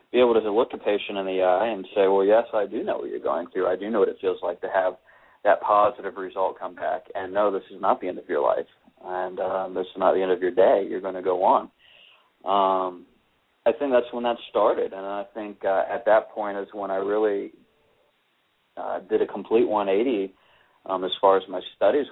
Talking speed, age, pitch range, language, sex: 240 wpm, 30-49, 90-105 Hz, English, male